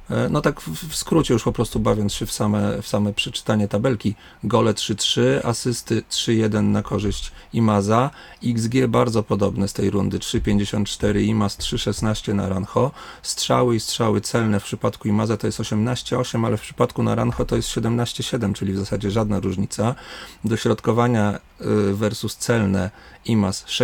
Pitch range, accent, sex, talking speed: 100-115 Hz, native, male, 150 wpm